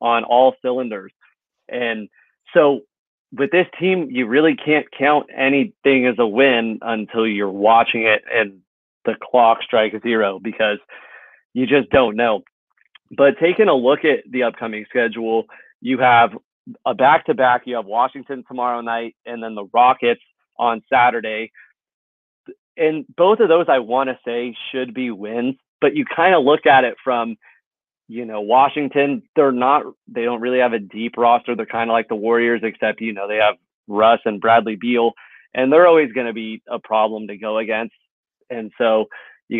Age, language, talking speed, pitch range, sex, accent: 30-49, English, 170 wpm, 115-135 Hz, male, American